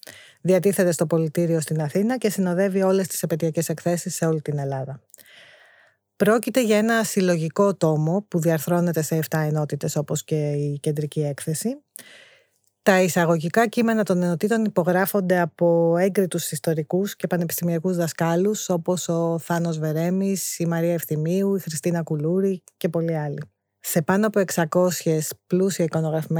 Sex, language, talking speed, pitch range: female, Greek, 135 wpm, 165-195 Hz